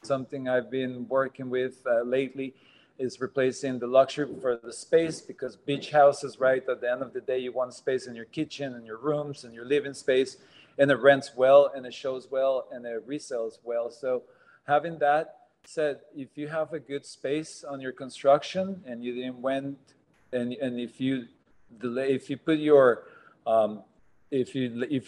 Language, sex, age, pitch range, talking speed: English, male, 40-59, 125-145 Hz, 190 wpm